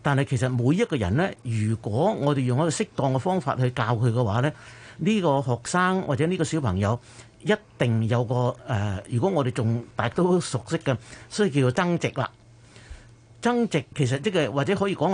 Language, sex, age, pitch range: Chinese, male, 50-69, 120-160 Hz